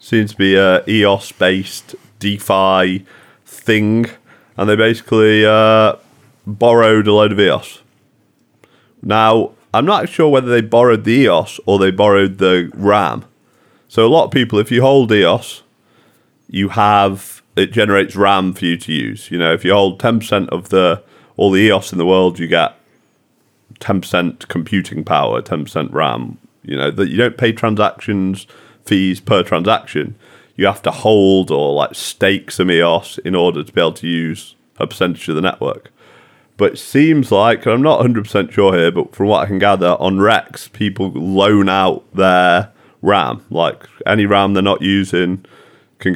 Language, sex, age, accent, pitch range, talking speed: English, male, 30-49, British, 95-110 Hz, 175 wpm